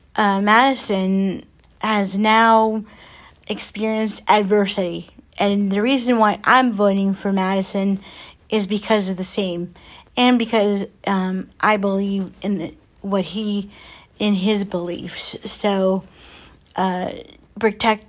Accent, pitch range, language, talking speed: American, 190-215 Hz, English, 115 wpm